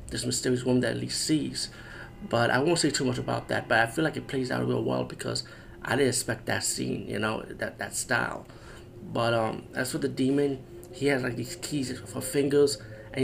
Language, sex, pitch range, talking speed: English, male, 105-135 Hz, 220 wpm